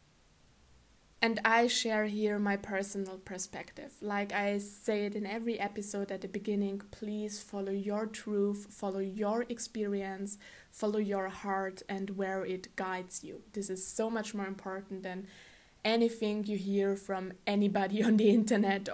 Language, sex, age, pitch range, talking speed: English, female, 20-39, 190-215 Hz, 150 wpm